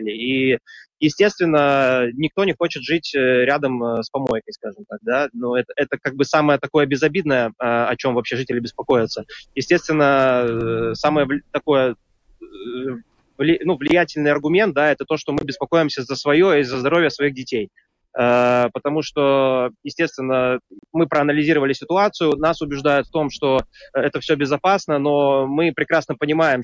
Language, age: Russian, 20-39